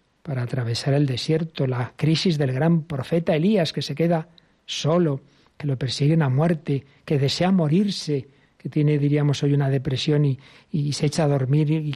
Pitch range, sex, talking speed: 135-160 Hz, male, 175 wpm